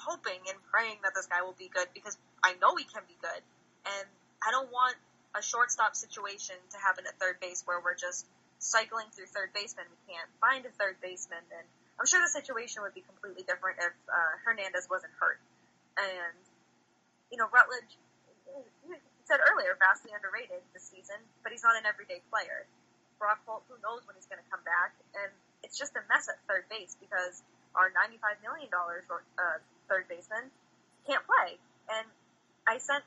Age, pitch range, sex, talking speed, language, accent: 20-39, 185-245 Hz, female, 180 wpm, English, American